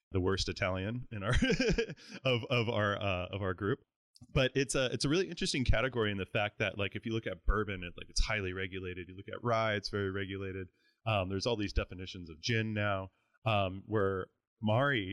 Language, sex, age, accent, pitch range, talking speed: English, male, 20-39, American, 90-110 Hz, 210 wpm